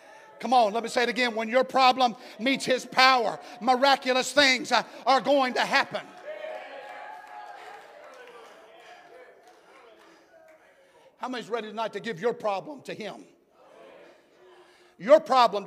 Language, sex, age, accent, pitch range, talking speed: English, male, 50-69, American, 240-315 Hz, 125 wpm